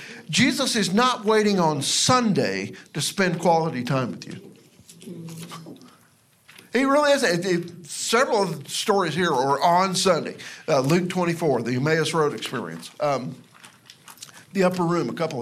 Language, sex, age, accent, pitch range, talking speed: English, male, 50-69, American, 155-225 Hz, 140 wpm